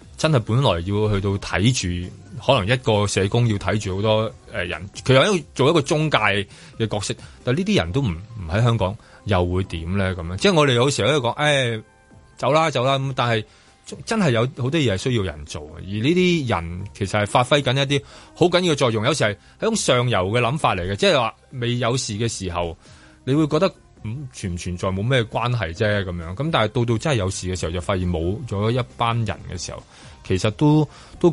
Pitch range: 95-125 Hz